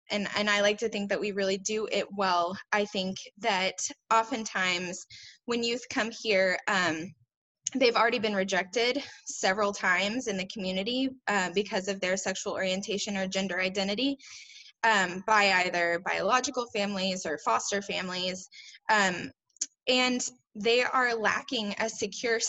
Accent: American